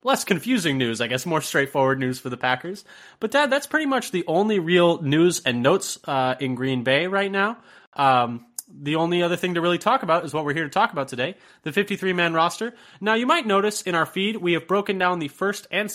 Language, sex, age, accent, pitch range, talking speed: English, male, 20-39, American, 140-200 Hz, 235 wpm